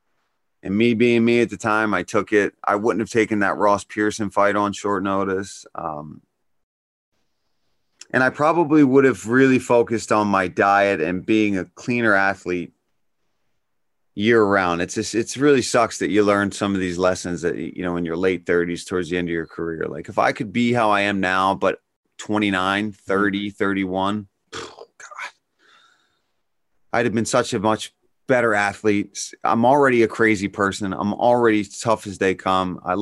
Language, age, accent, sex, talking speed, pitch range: English, 30-49, American, male, 175 wpm, 95-115 Hz